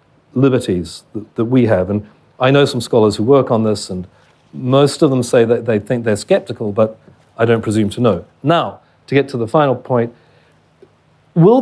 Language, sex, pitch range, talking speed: English, male, 120-165 Hz, 190 wpm